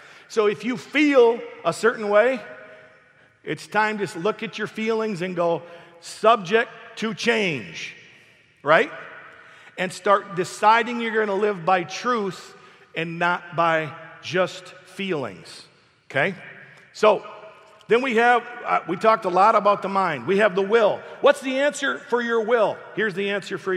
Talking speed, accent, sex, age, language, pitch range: 150 wpm, American, male, 50-69, English, 135-205 Hz